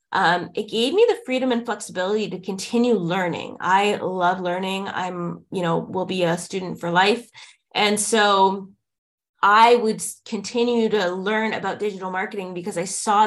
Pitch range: 185-230 Hz